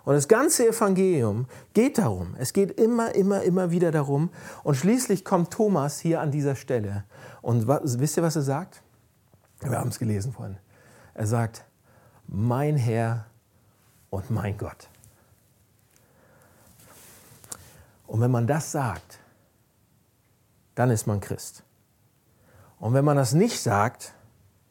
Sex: male